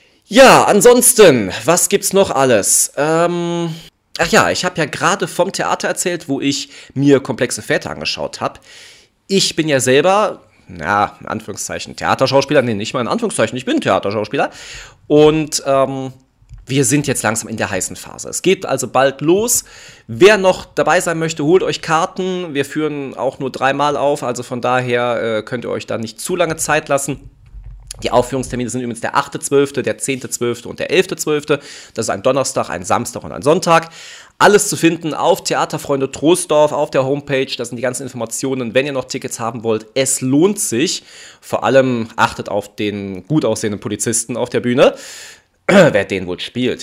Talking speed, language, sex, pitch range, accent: 180 wpm, German, male, 120-165 Hz, German